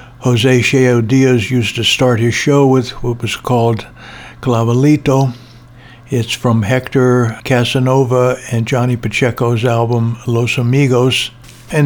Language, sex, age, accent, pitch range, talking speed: English, male, 60-79, American, 115-125 Hz, 120 wpm